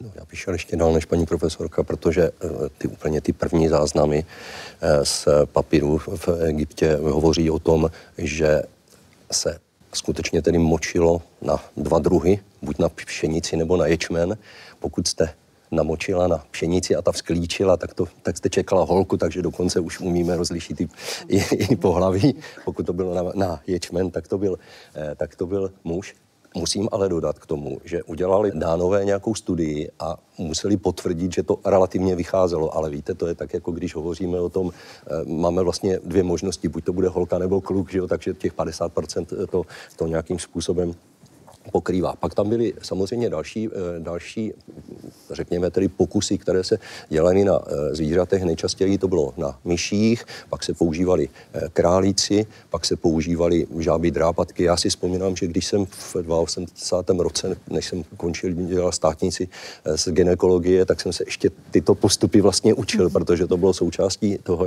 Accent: native